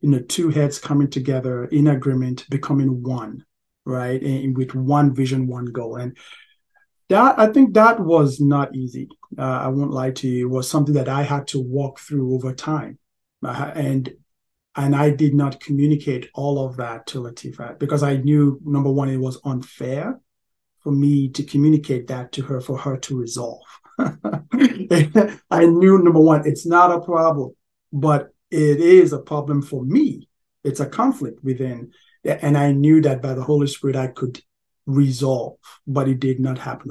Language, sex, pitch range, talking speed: English, male, 130-150 Hz, 175 wpm